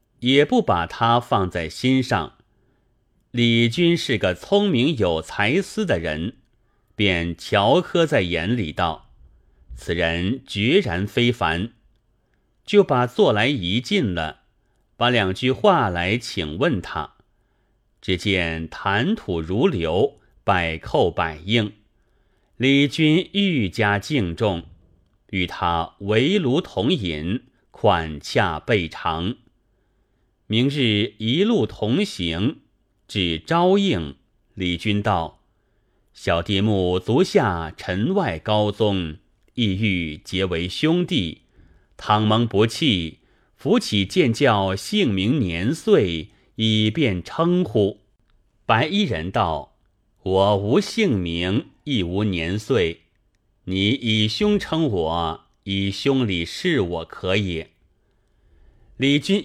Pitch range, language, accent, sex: 90-125 Hz, Chinese, native, male